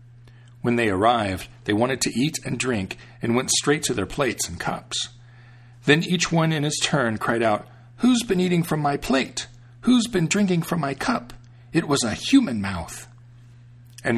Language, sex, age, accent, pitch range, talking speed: English, male, 40-59, American, 115-140 Hz, 180 wpm